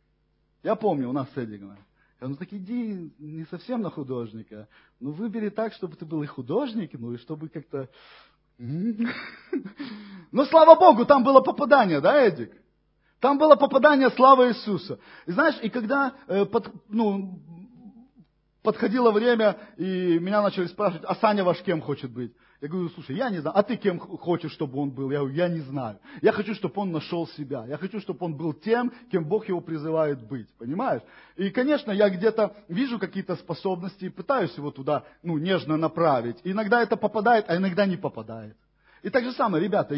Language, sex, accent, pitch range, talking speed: Russian, male, native, 160-245 Hz, 175 wpm